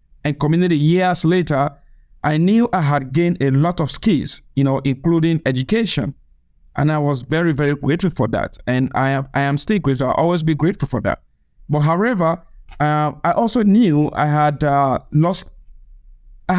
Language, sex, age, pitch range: English, male, 50-69, 140-175 Hz